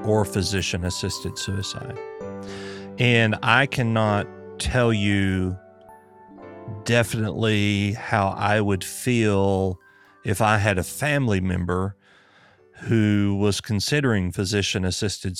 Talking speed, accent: 95 wpm, American